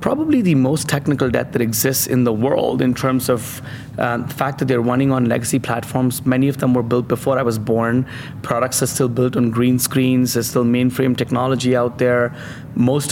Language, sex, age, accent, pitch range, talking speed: English, male, 30-49, Indian, 120-140 Hz, 205 wpm